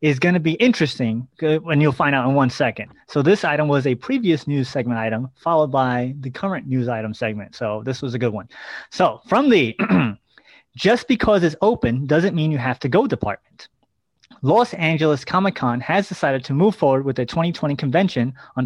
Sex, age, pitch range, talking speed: male, 30-49, 130-170 Hz, 200 wpm